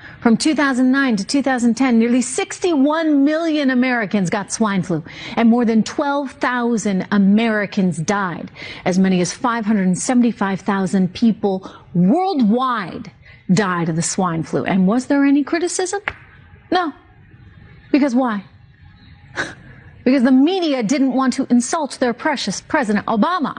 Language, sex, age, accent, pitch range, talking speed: English, female, 40-59, American, 190-260 Hz, 120 wpm